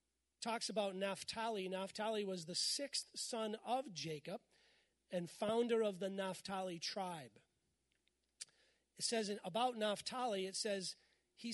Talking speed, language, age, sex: 120 wpm, English, 40-59, male